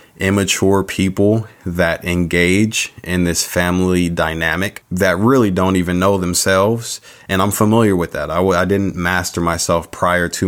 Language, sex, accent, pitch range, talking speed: English, male, American, 85-95 Hz, 150 wpm